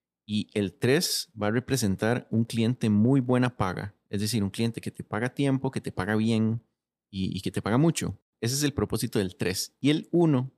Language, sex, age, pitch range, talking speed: Spanish, male, 30-49, 95-125 Hz, 215 wpm